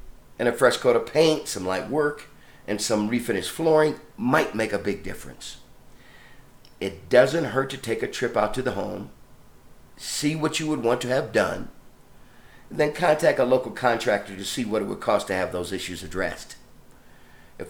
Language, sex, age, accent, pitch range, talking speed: English, male, 50-69, American, 105-145 Hz, 185 wpm